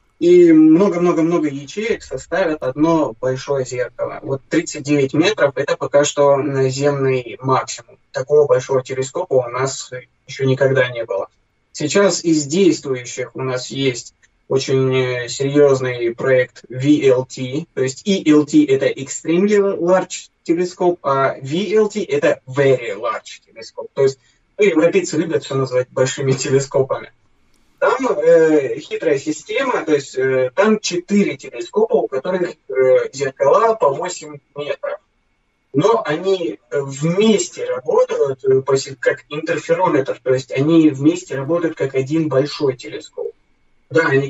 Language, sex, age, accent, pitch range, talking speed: Russian, male, 20-39, native, 135-200 Hz, 120 wpm